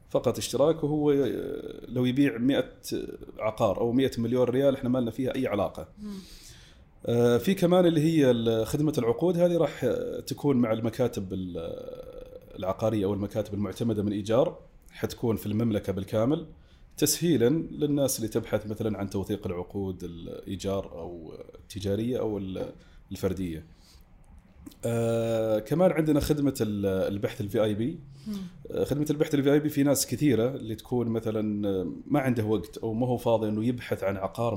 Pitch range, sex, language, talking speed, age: 105-140 Hz, male, Arabic, 135 wpm, 30-49